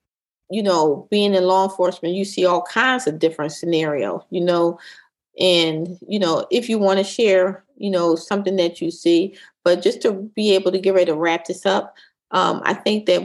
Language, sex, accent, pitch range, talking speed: English, female, American, 170-195 Hz, 205 wpm